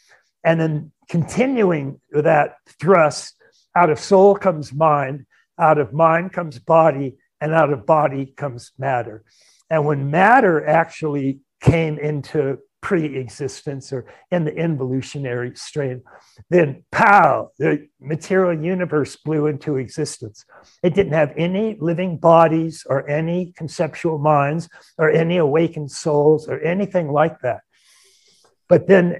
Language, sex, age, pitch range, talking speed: English, male, 60-79, 135-170 Hz, 125 wpm